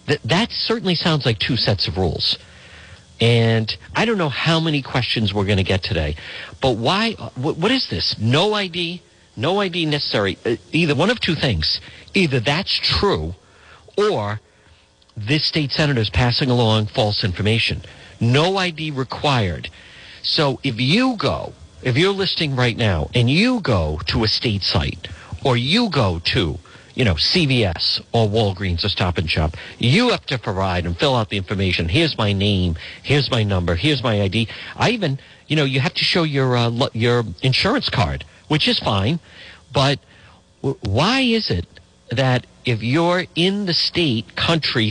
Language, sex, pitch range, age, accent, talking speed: English, male, 100-150 Hz, 50-69, American, 165 wpm